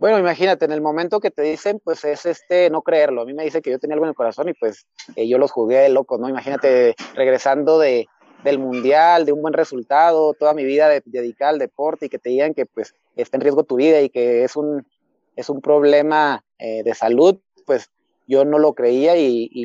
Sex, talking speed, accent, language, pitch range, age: male, 235 wpm, Mexican, Spanish, 130-160 Hz, 30-49